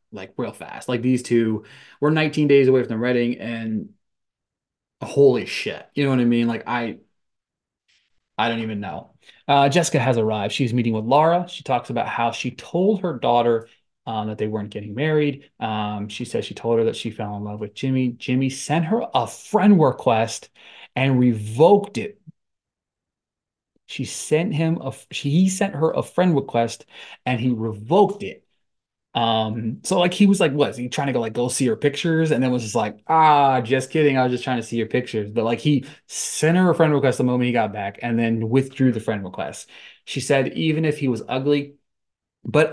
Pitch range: 115-155 Hz